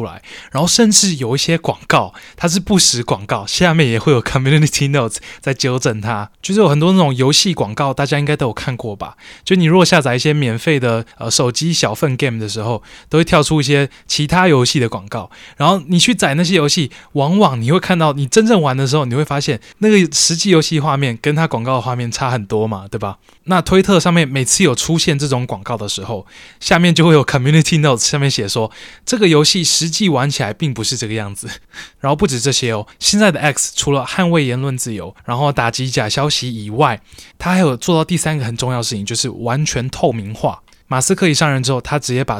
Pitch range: 120-160 Hz